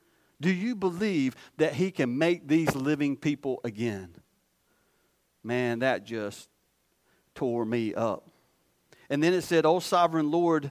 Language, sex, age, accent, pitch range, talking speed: English, male, 50-69, American, 150-220 Hz, 135 wpm